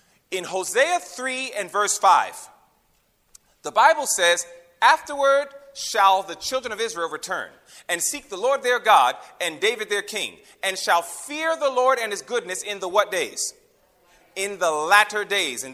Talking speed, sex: 165 wpm, male